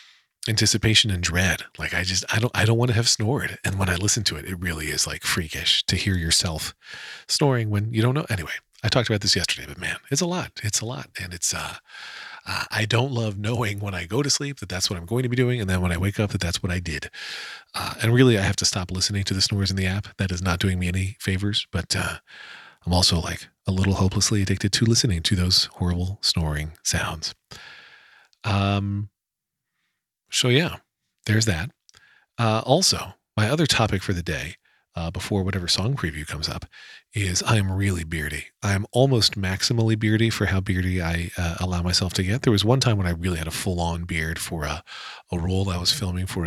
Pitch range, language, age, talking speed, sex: 90-110 Hz, English, 40-59, 225 wpm, male